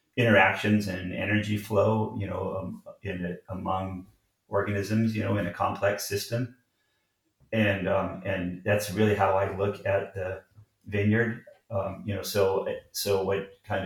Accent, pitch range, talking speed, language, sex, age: American, 95-105 Hz, 145 wpm, English, male, 30-49